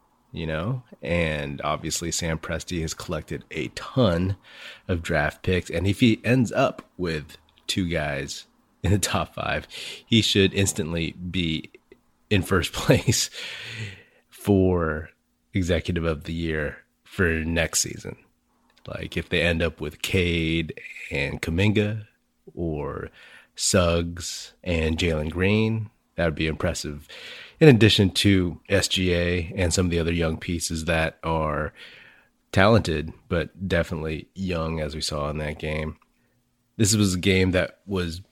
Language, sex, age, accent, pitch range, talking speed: English, male, 30-49, American, 80-95 Hz, 135 wpm